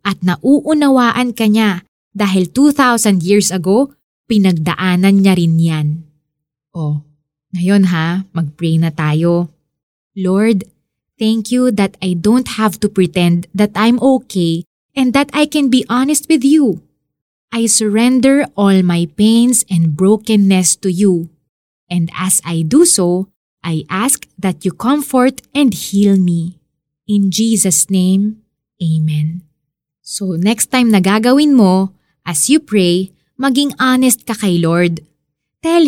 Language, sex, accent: Filipino, female, native